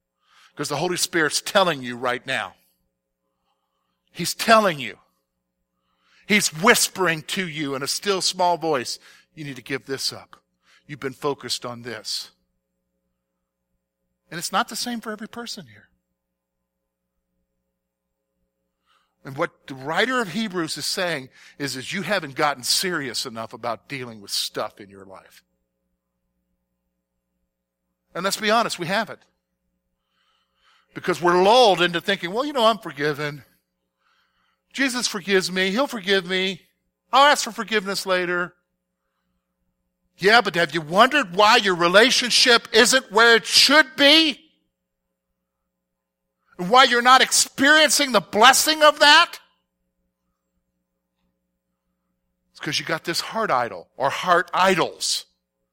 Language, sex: English, male